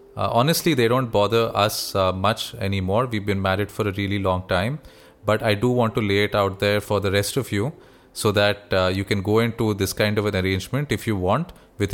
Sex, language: male, English